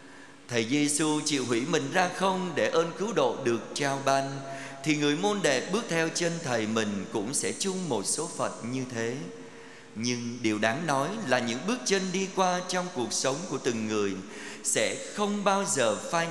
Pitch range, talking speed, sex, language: 115-155 Hz, 190 wpm, male, Vietnamese